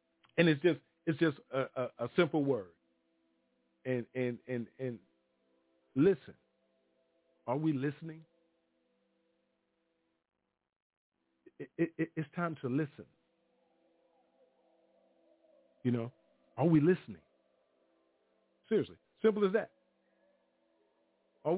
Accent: American